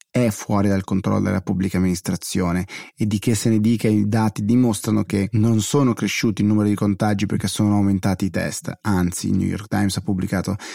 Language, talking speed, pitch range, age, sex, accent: Italian, 200 wpm, 105-115 Hz, 30-49, male, native